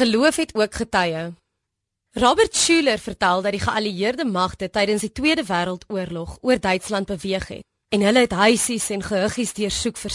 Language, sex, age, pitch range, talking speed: Dutch, female, 20-39, 180-240 Hz, 160 wpm